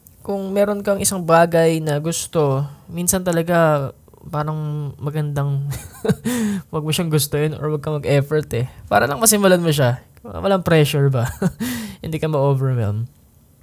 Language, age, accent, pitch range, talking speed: Filipino, 20-39, native, 125-155 Hz, 130 wpm